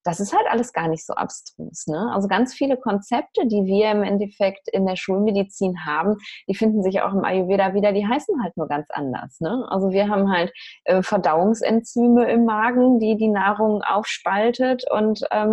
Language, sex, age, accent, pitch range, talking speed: German, female, 20-39, German, 175-215 Hz, 180 wpm